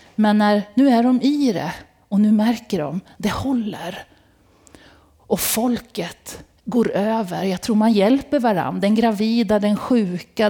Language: Swedish